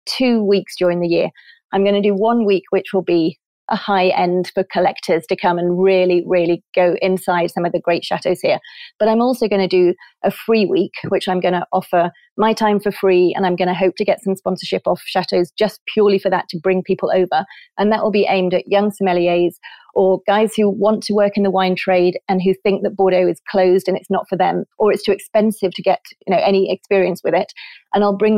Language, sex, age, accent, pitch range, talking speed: English, female, 30-49, British, 185-210 Hz, 240 wpm